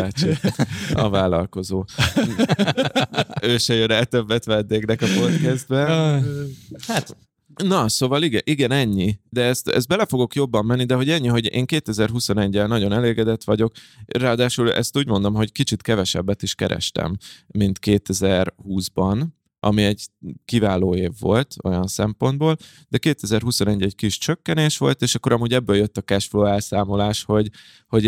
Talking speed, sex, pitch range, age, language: 140 wpm, male, 100-120 Hz, 20-39, Hungarian